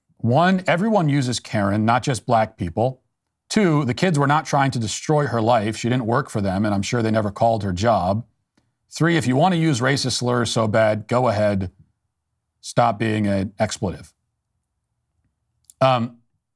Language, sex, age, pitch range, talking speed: English, male, 40-59, 110-135 Hz, 175 wpm